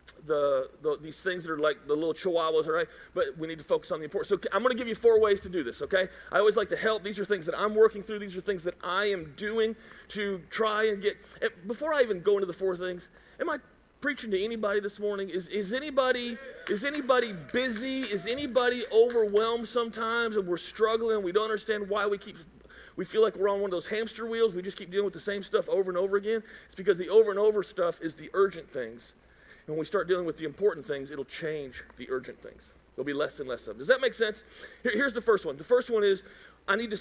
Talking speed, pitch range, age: 260 wpm, 195-260 Hz, 40-59